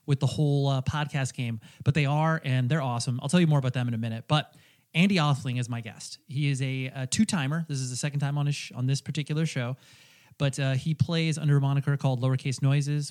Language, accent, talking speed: English, American, 250 wpm